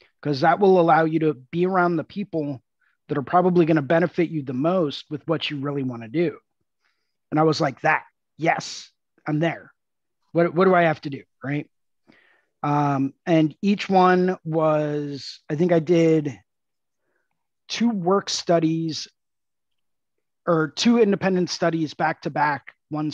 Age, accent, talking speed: 30-49, American, 160 wpm